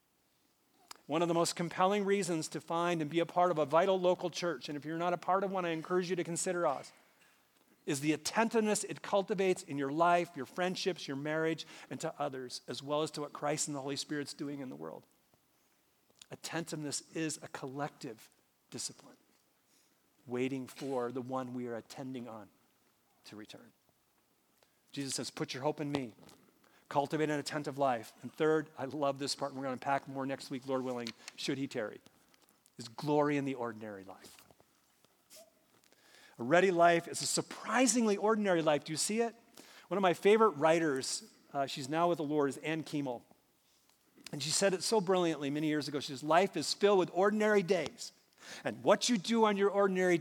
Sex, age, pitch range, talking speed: male, 40-59, 140-180 Hz, 190 wpm